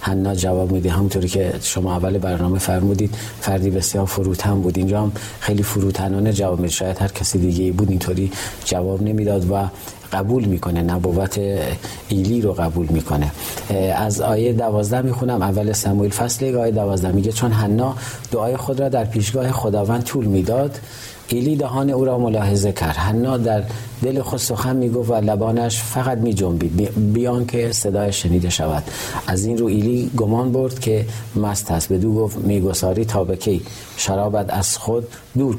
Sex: male